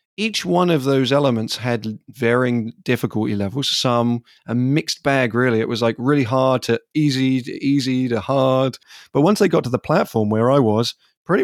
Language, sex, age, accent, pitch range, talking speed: English, male, 30-49, British, 115-140 Hz, 185 wpm